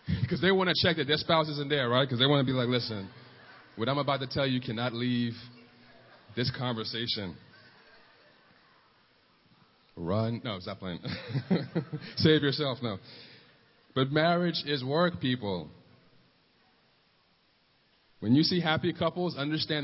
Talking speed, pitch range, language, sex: 140 wpm, 115-150 Hz, English, male